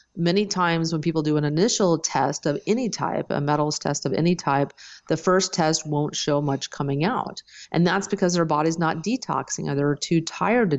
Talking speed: 205 wpm